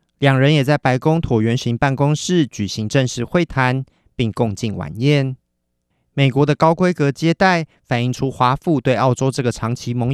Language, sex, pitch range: Chinese, male, 120-150 Hz